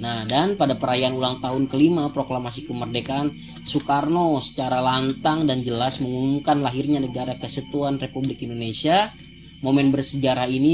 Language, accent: Indonesian, native